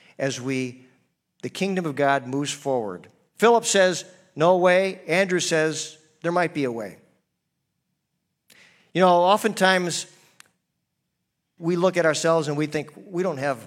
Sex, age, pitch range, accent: male, 50-69, 130-185 Hz, American